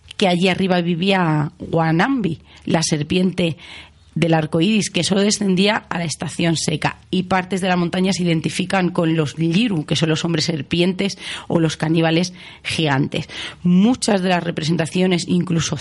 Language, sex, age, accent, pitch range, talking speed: Spanish, female, 30-49, Spanish, 155-185 Hz, 155 wpm